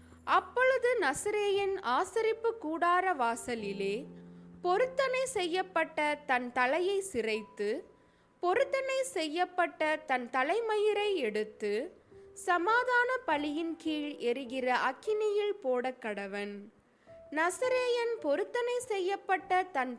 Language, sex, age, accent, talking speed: Tamil, female, 20-39, native, 75 wpm